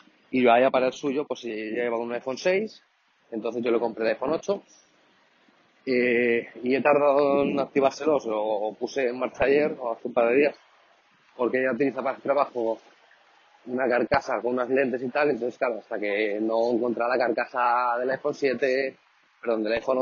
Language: Spanish